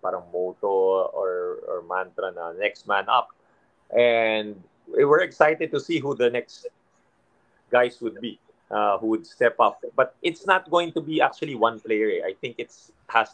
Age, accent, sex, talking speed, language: 30-49, native, male, 175 wpm, Filipino